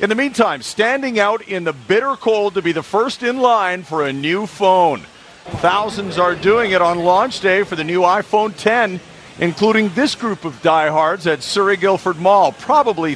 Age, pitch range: 50-69, 160-215 Hz